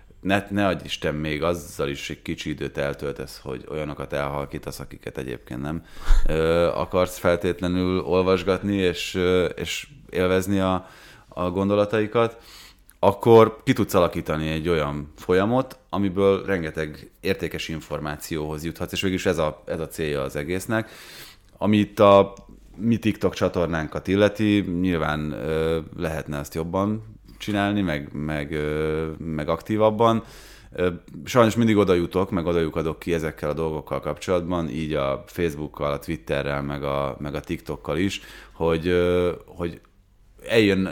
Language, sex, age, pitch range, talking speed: Hungarian, male, 30-49, 75-95 Hz, 130 wpm